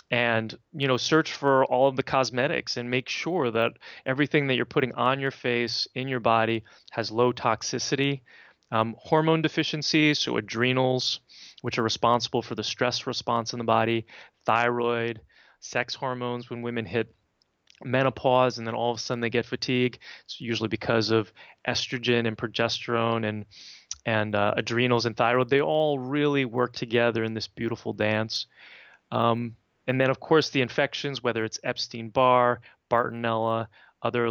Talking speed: 160 wpm